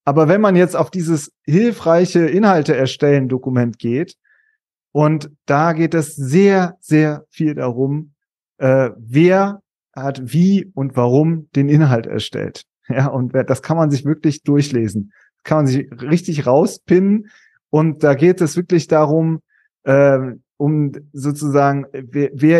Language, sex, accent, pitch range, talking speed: German, male, German, 140-175 Hz, 135 wpm